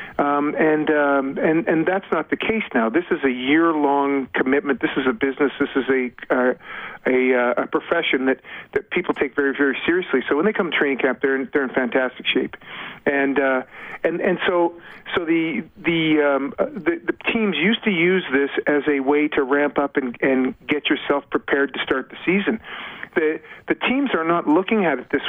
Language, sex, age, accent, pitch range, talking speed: English, male, 50-69, American, 140-195 Hz, 205 wpm